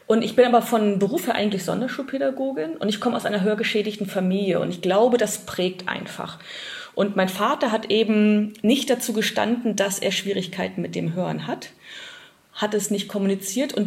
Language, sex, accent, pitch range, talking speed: German, female, German, 180-215 Hz, 180 wpm